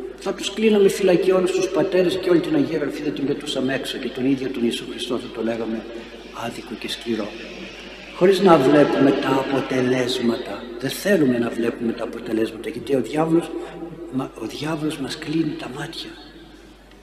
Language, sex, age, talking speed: Greek, male, 60-79, 160 wpm